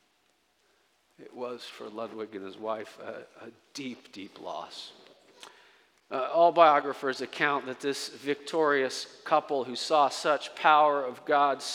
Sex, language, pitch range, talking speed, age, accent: male, English, 125-145 Hz, 135 wpm, 50-69, American